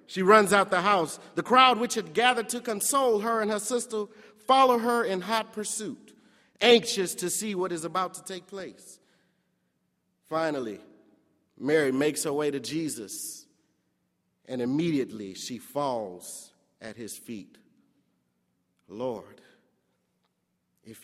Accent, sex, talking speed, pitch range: American, male, 130 wpm, 145-230 Hz